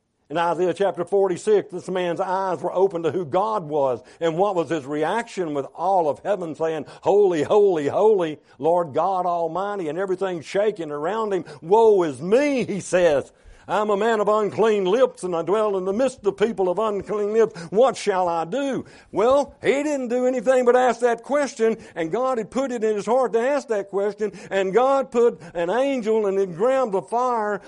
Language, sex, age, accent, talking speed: English, male, 60-79, American, 195 wpm